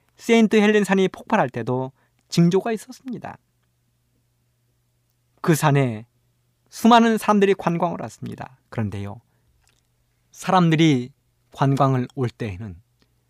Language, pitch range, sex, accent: Korean, 120-175 Hz, male, native